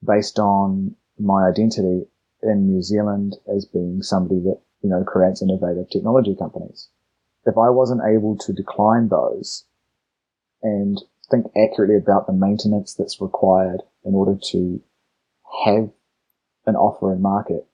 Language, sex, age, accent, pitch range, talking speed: English, male, 30-49, Australian, 95-105 Hz, 135 wpm